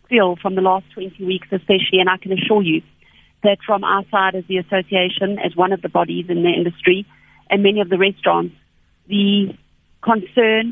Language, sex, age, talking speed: English, female, 40-59, 185 wpm